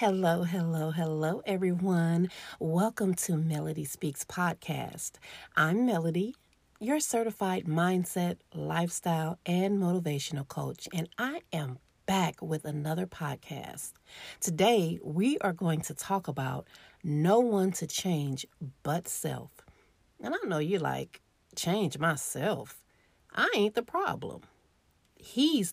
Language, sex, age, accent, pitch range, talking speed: English, female, 40-59, American, 155-215 Hz, 115 wpm